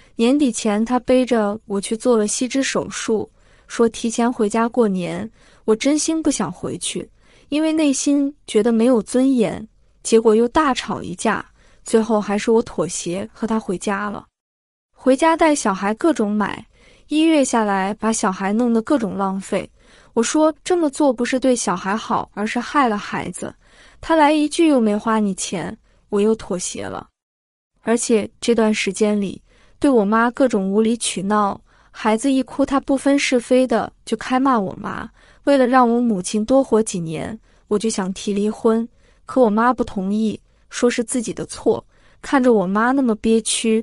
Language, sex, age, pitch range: Chinese, female, 20-39, 210-255 Hz